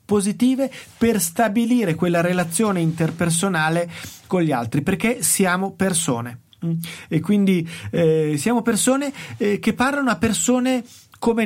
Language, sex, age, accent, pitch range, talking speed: Italian, male, 30-49, native, 160-220 Hz, 120 wpm